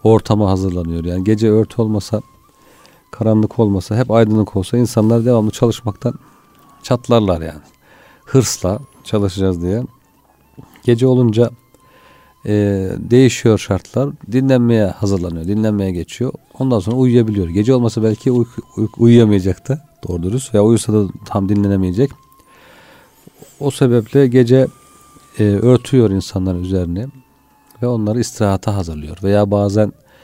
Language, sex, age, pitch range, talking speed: Turkish, male, 40-59, 95-120 Hz, 115 wpm